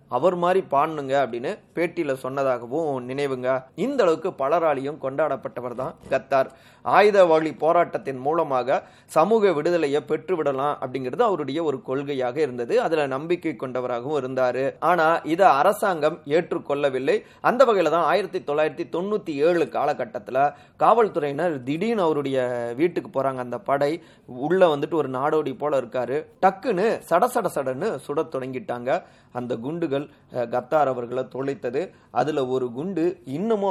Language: Tamil